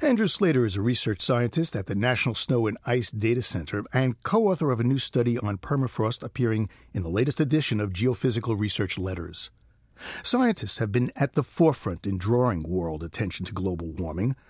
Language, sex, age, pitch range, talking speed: English, male, 50-69, 100-140 Hz, 180 wpm